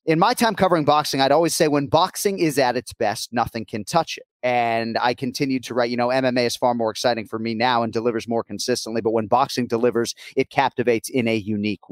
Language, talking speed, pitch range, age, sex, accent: English, 230 wpm, 115-145 Hz, 30-49, male, American